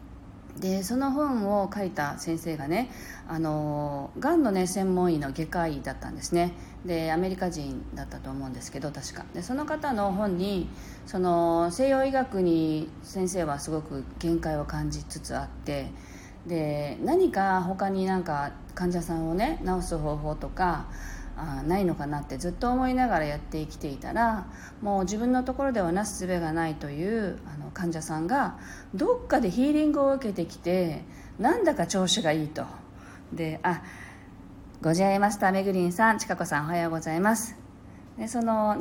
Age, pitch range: 40-59, 150-205 Hz